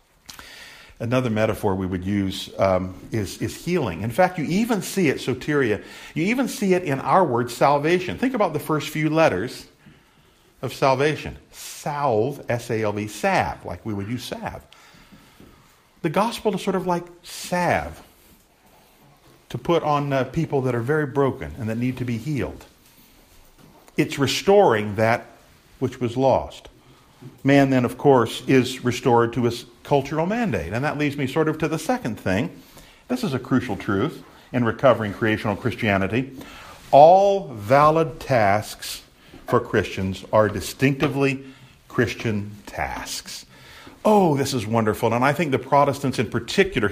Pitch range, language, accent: 115-160 Hz, English, American